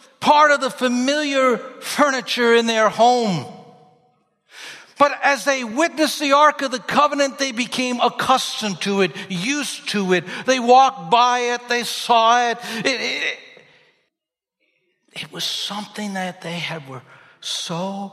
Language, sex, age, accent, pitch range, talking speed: English, male, 60-79, American, 170-255 Hz, 130 wpm